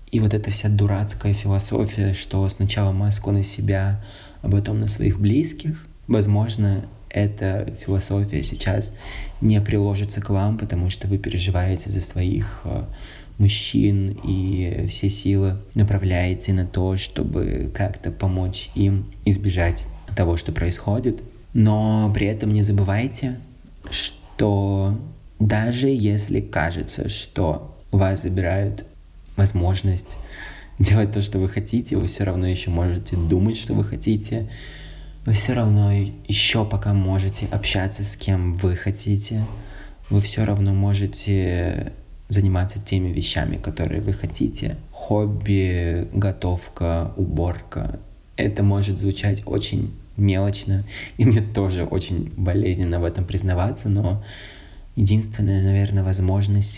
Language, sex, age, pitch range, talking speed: Russian, male, 20-39, 95-105 Hz, 120 wpm